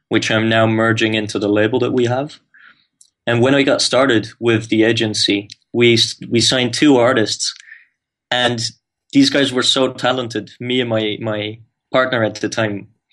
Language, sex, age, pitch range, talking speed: English, male, 20-39, 110-130 Hz, 170 wpm